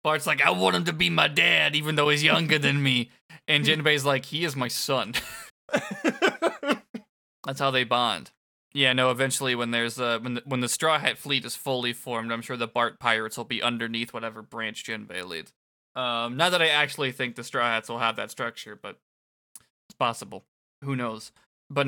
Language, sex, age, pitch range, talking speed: English, male, 20-39, 115-150 Hz, 200 wpm